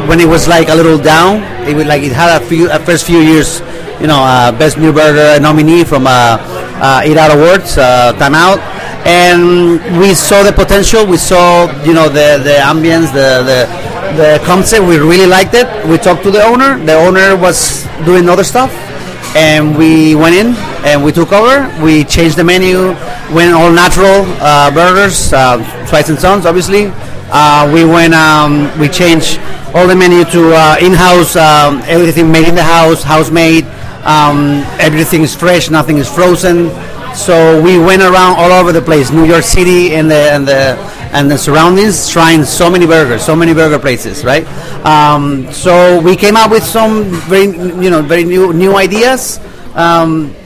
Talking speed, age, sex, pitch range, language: 185 wpm, 30-49, male, 150-180 Hz, English